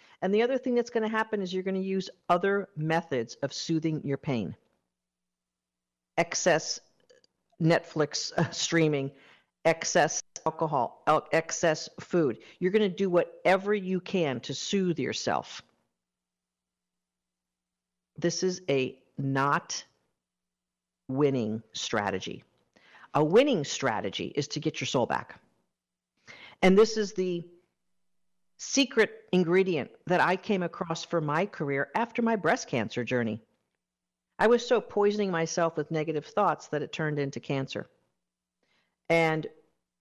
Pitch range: 115-180 Hz